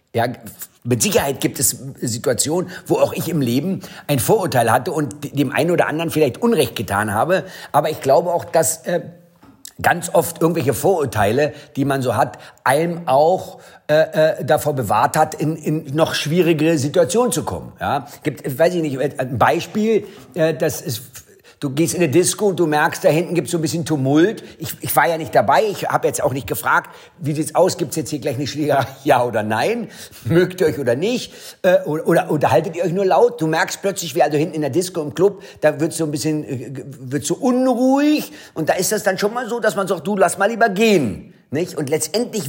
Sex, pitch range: male, 145-180 Hz